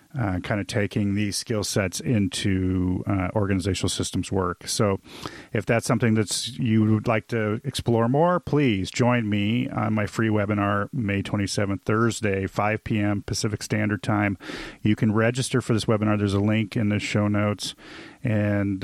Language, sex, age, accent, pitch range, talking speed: English, male, 40-59, American, 105-120 Hz, 165 wpm